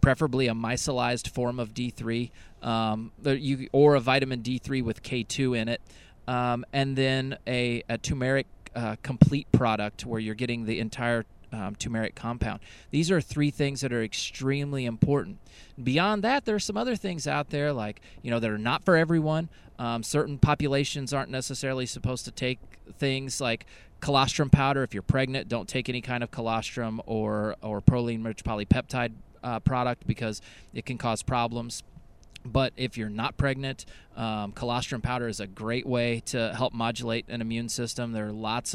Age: 30-49